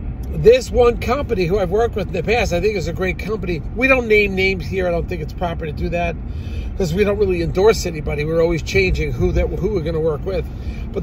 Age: 50-69